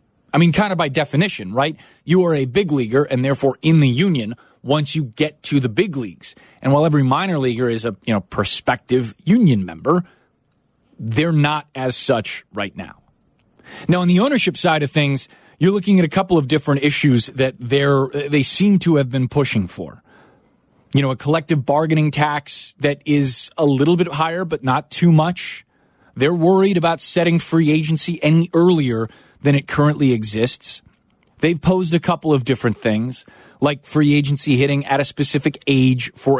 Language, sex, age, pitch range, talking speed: English, male, 30-49, 125-160 Hz, 180 wpm